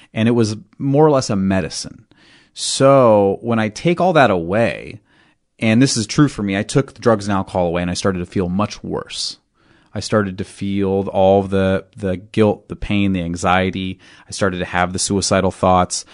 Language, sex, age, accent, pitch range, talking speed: English, male, 30-49, American, 95-115 Hz, 200 wpm